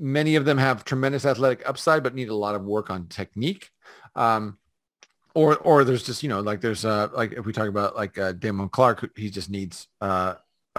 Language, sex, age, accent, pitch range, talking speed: English, male, 40-59, American, 105-140 Hz, 210 wpm